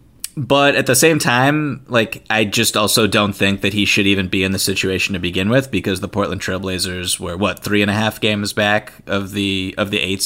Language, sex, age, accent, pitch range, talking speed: English, male, 20-39, American, 100-120 Hz, 220 wpm